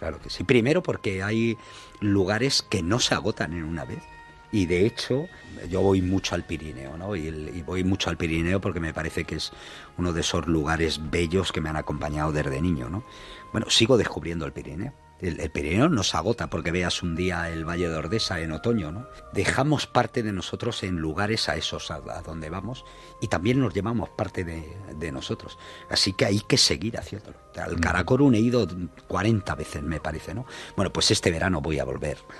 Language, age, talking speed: Spanish, 50-69, 200 wpm